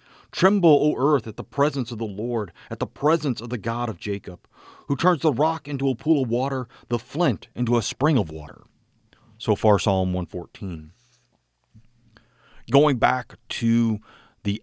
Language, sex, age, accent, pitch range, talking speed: English, male, 40-59, American, 110-135 Hz, 170 wpm